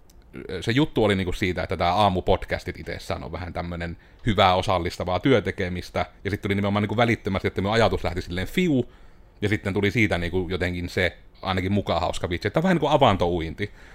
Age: 30-49